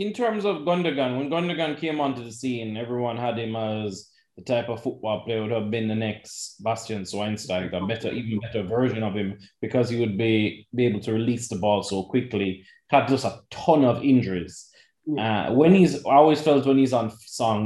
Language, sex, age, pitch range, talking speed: English, male, 20-39, 105-140 Hz, 210 wpm